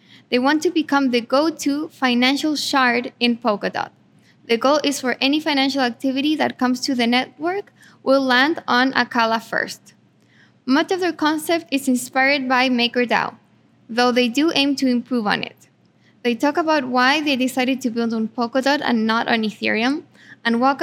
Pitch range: 240-280 Hz